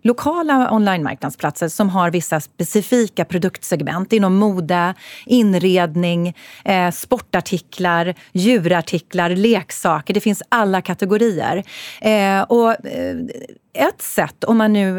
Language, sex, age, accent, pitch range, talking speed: Swedish, female, 30-49, native, 175-240 Hz, 105 wpm